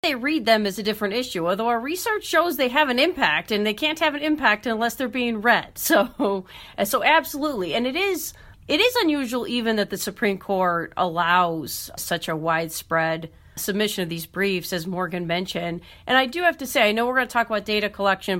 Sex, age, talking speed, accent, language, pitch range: female, 40-59, 210 wpm, American, English, 185-255 Hz